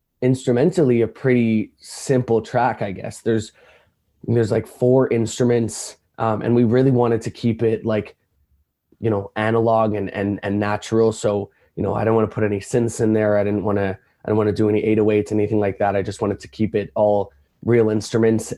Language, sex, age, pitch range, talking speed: English, male, 20-39, 105-115 Hz, 205 wpm